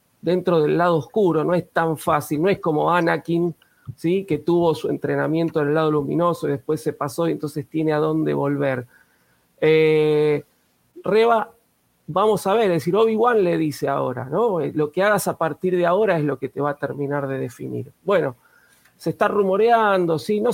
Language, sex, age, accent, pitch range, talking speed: Spanish, male, 40-59, Argentinian, 150-185 Hz, 180 wpm